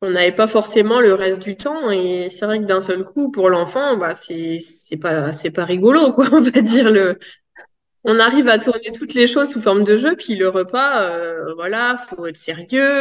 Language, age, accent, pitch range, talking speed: French, 20-39, French, 180-235 Hz, 220 wpm